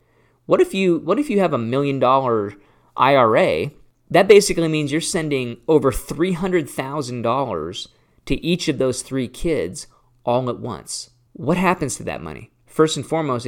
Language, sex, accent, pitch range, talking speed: English, male, American, 115-165 Hz, 165 wpm